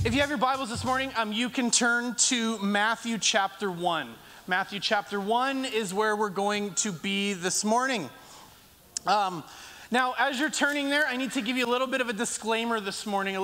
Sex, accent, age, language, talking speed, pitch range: male, American, 30-49, English, 205 wpm, 210-265 Hz